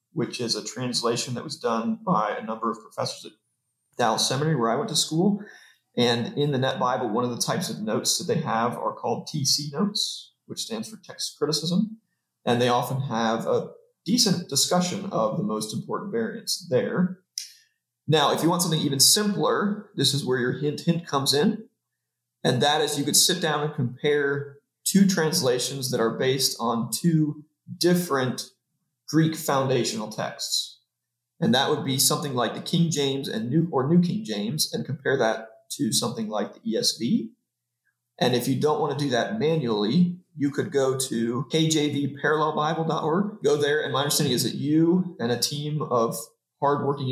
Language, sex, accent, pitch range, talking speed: English, male, American, 125-175 Hz, 180 wpm